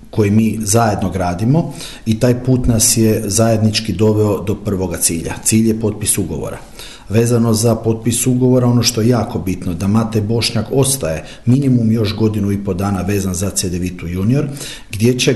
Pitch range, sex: 105-120 Hz, male